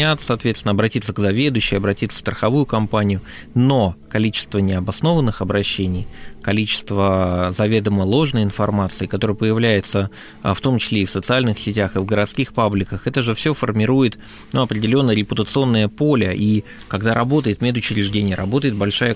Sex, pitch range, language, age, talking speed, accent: male, 105-130 Hz, Russian, 20-39, 135 wpm, native